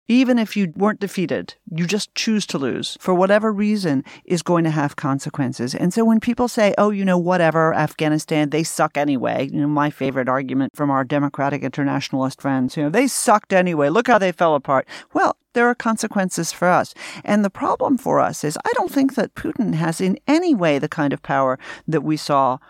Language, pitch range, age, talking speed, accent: English, 145-215 Hz, 40-59, 210 wpm, American